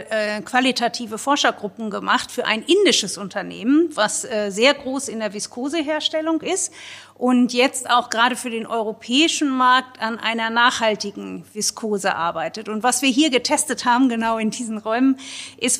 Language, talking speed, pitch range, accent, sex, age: German, 145 wpm, 225-275 Hz, German, female, 50-69